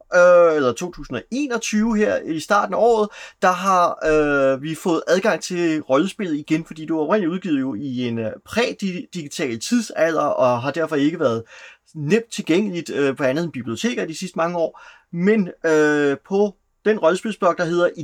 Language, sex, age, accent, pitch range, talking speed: Danish, male, 30-49, native, 140-200 Hz, 165 wpm